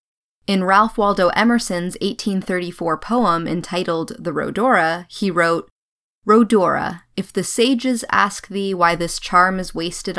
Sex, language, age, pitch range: female, English, 20-39, 170-215 Hz